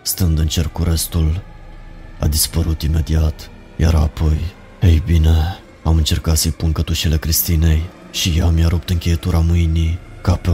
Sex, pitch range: male, 80-90 Hz